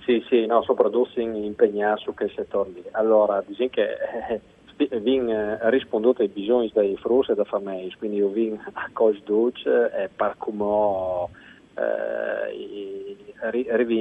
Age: 40-59